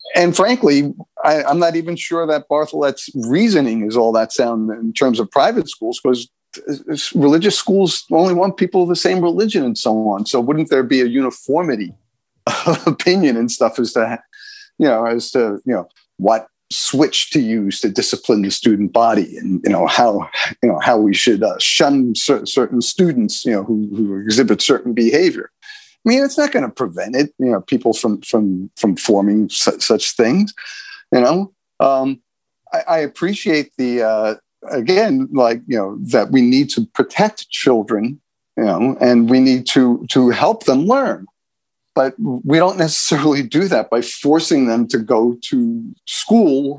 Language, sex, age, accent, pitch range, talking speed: English, male, 50-69, American, 120-195 Hz, 175 wpm